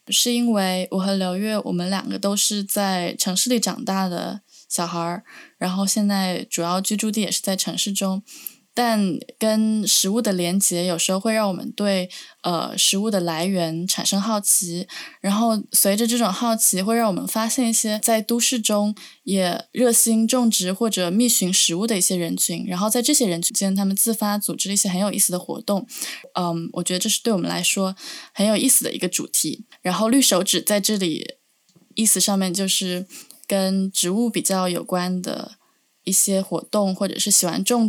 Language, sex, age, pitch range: Chinese, female, 20-39, 185-225 Hz